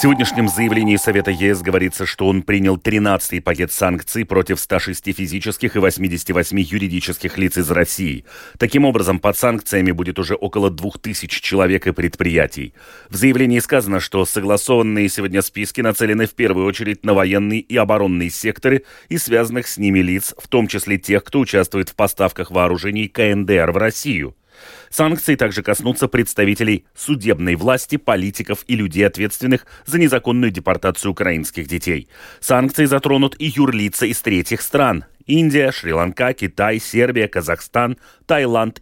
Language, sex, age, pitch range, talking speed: Russian, male, 30-49, 95-125 Hz, 145 wpm